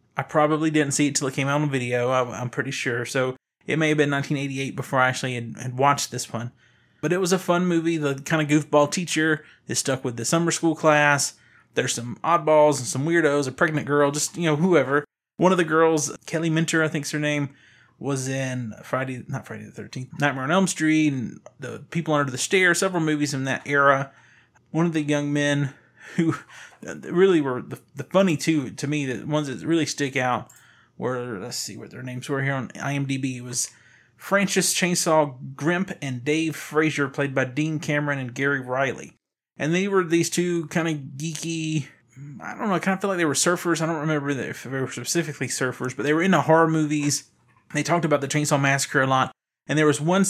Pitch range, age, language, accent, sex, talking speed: 135-160 Hz, 20-39, English, American, male, 215 wpm